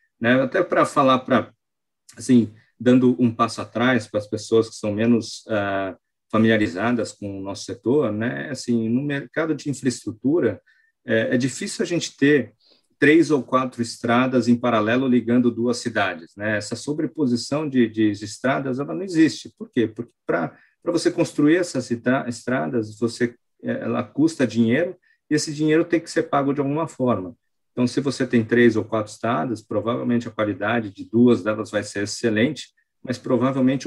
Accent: Brazilian